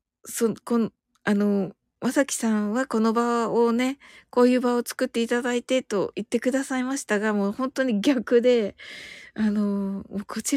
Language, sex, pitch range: Japanese, female, 195-240 Hz